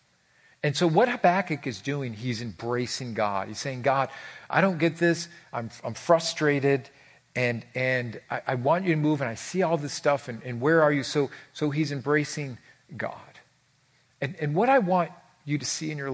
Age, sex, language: 50-69, male, English